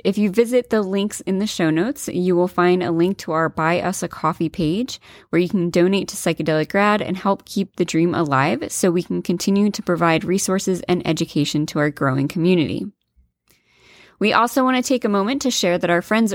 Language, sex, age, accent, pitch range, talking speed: English, female, 20-39, American, 170-200 Hz, 215 wpm